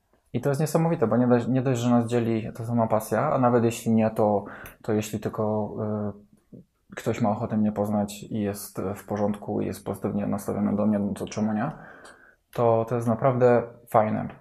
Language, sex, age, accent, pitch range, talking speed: Polish, male, 20-39, native, 110-120 Hz, 190 wpm